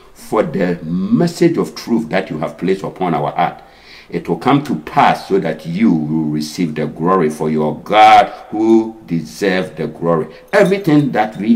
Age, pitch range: 60-79, 75-90 Hz